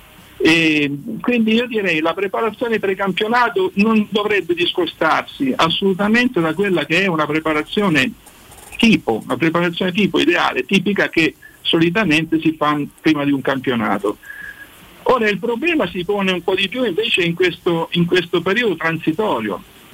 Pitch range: 160-225 Hz